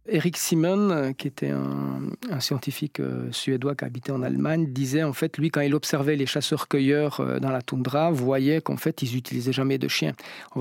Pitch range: 130-155 Hz